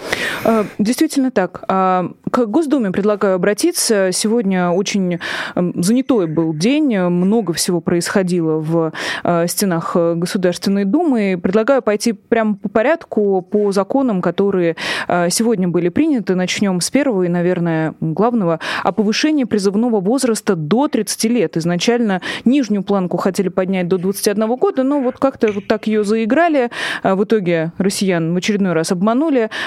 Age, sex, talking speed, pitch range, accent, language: 20-39, female, 130 wpm, 175-230 Hz, native, Russian